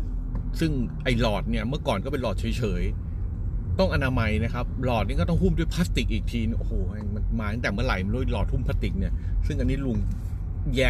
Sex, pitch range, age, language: male, 90-110 Hz, 30-49, Thai